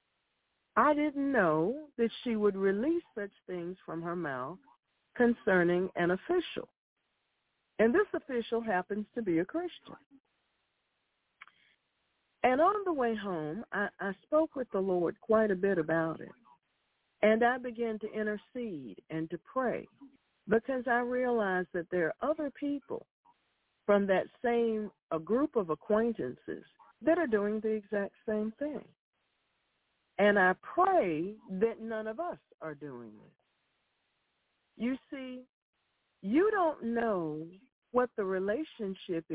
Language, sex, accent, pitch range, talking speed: English, female, American, 180-255 Hz, 135 wpm